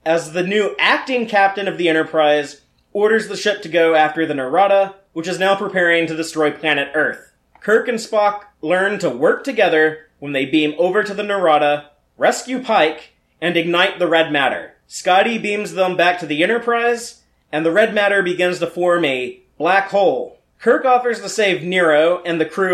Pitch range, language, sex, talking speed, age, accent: 165-215 Hz, English, male, 185 wpm, 30-49, American